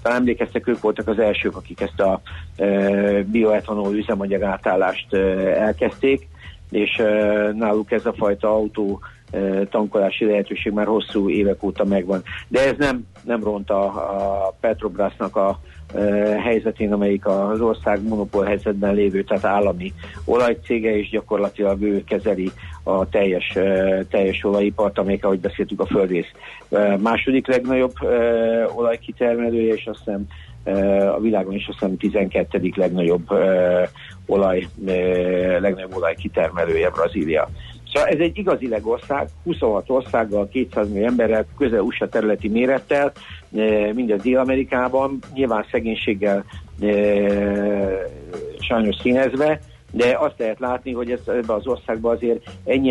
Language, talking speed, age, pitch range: Hungarian, 125 wpm, 50-69, 100-115 Hz